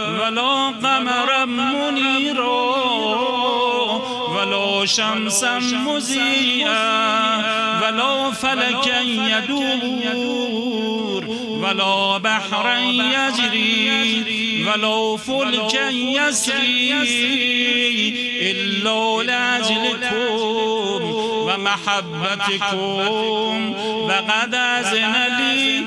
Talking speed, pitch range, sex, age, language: 50 wpm, 220-245 Hz, male, 50-69, Persian